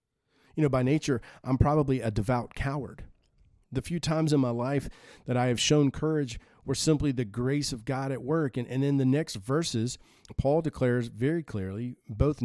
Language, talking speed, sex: English, 190 wpm, male